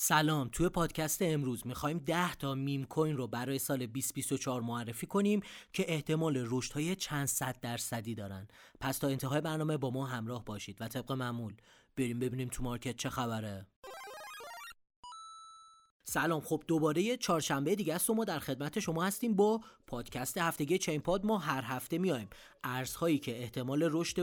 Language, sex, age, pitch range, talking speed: Persian, male, 30-49, 130-180 Hz, 160 wpm